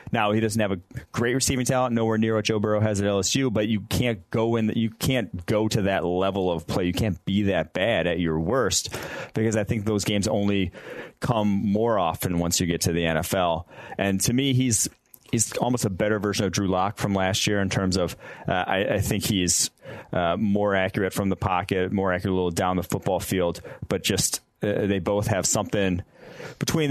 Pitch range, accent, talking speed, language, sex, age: 90-110 Hz, American, 220 wpm, English, male, 30-49